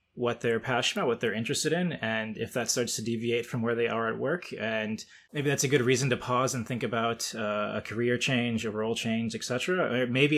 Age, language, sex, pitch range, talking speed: 20-39, English, male, 110-120 Hz, 245 wpm